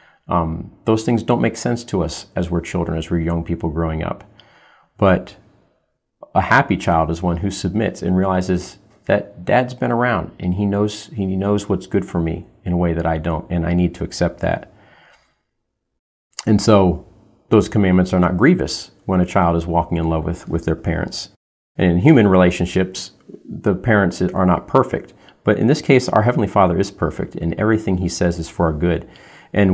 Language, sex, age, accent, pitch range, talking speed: English, male, 40-59, American, 85-105 Hz, 190 wpm